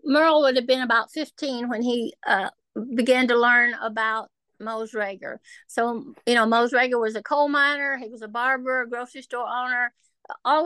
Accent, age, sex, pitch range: American, 60-79, female, 235-275 Hz